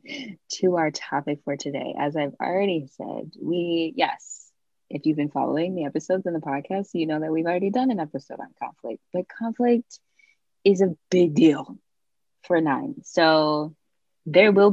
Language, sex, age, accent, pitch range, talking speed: English, female, 20-39, American, 150-180 Hz, 165 wpm